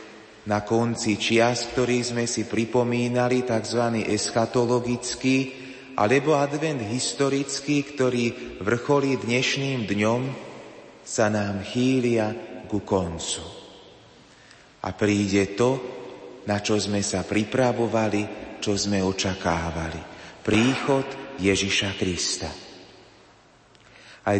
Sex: male